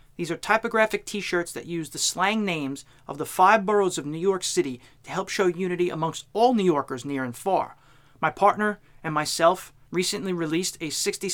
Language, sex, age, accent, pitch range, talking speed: English, male, 30-49, American, 155-200 Hz, 190 wpm